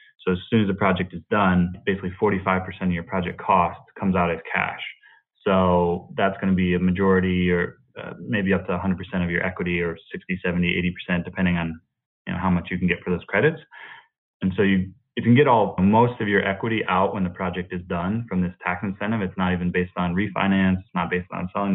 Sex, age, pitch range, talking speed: male, 20-39, 90-95 Hz, 225 wpm